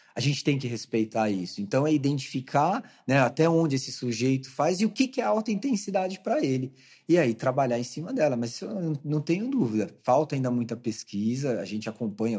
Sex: male